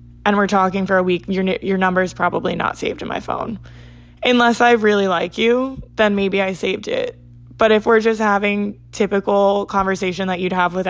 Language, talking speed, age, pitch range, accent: English, 200 wpm, 20-39, 175-215 Hz, American